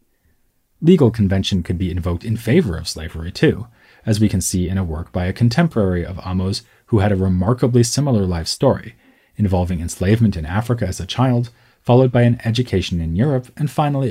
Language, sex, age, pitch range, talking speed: English, male, 30-49, 90-115 Hz, 185 wpm